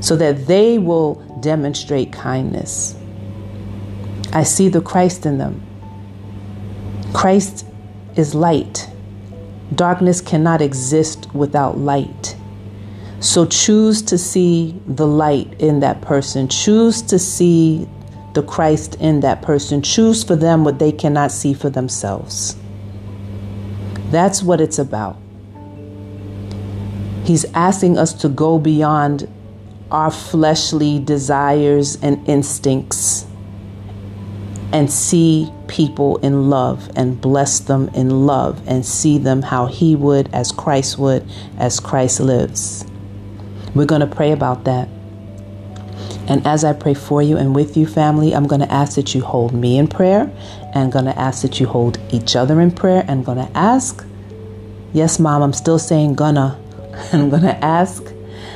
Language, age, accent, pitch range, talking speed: English, 40-59, American, 100-155 Hz, 130 wpm